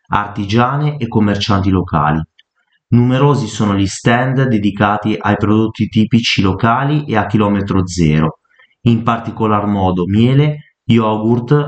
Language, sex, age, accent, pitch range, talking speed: Italian, male, 30-49, native, 100-125 Hz, 115 wpm